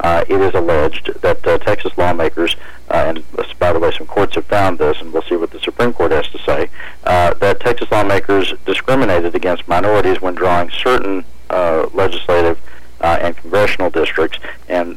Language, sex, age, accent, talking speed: English, male, 40-59, American, 185 wpm